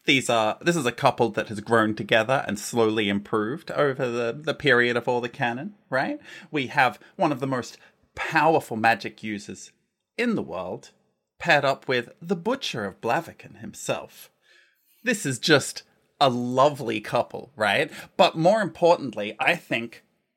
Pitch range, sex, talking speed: 115-165 Hz, male, 160 wpm